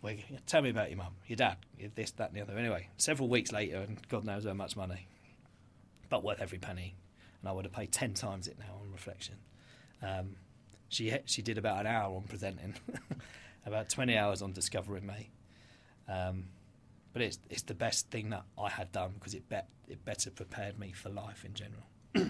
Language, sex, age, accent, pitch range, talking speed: English, male, 20-39, British, 95-115 Hz, 200 wpm